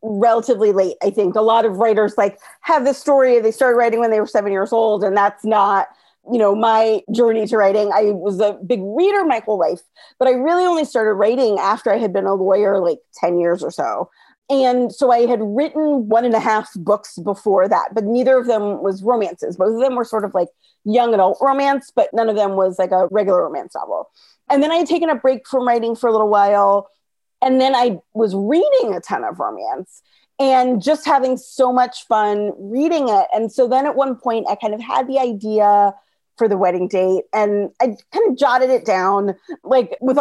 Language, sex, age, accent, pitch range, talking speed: English, female, 40-59, American, 210-260 Hz, 220 wpm